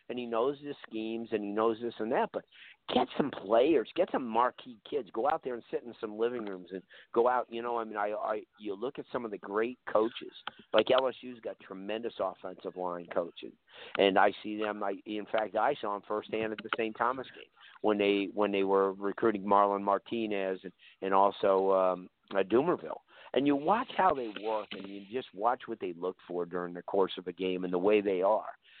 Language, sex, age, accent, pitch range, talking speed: English, male, 50-69, American, 100-130 Hz, 220 wpm